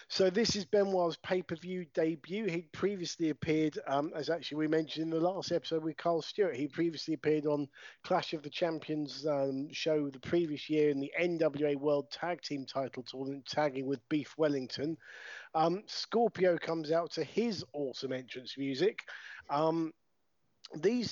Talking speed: 160 wpm